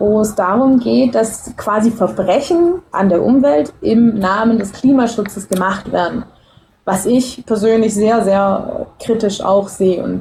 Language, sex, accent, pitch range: German, female, German, 190-245 Hz